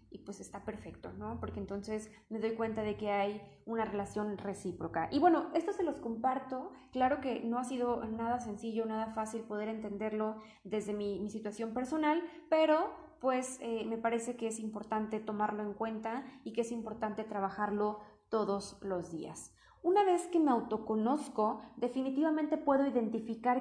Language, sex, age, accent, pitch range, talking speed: Spanish, female, 20-39, Mexican, 215-260 Hz, 165 wpm